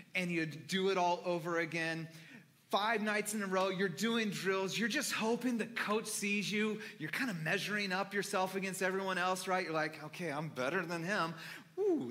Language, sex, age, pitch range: English, male, 30-49, 165-220 Hz